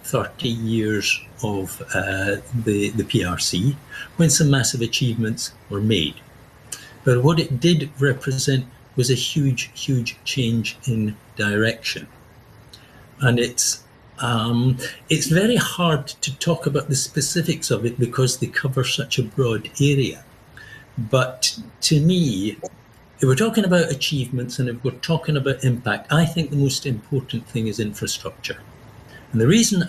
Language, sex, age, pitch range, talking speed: English, male, 60-79, 115-140 Hz, 140 wpm